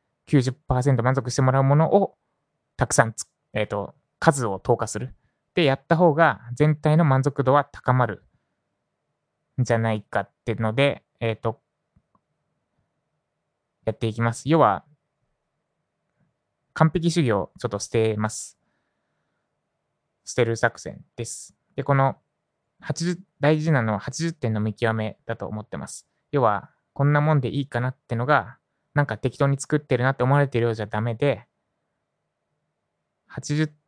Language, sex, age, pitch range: Japanese, male, 20-39, 115-150 Hz